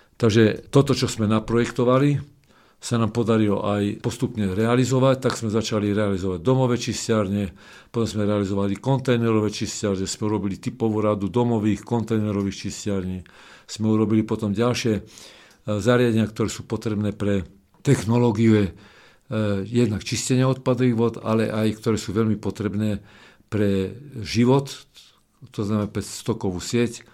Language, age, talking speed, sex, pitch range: Slovak, 50-69, 125 wpm, male, 100-120 Hz